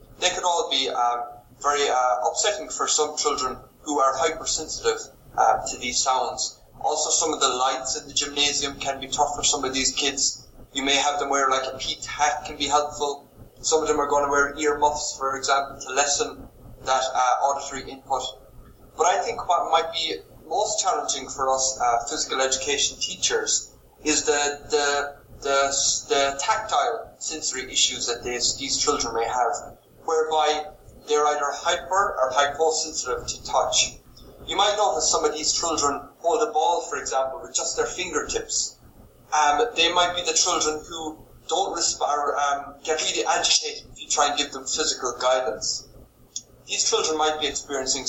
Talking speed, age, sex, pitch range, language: 175 wpm, 20-39, male, 130-160 Hz, English